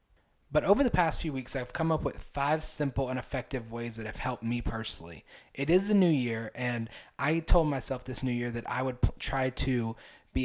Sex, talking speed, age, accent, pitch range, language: male, 225 wpm, 20-39, American, 120-145 Hz, English